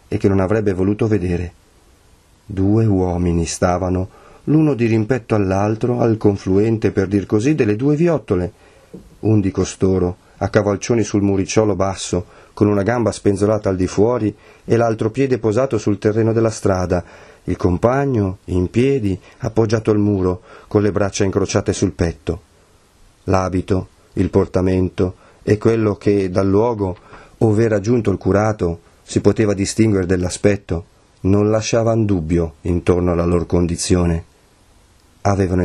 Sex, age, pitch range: male, 40-59, 95-110 Hz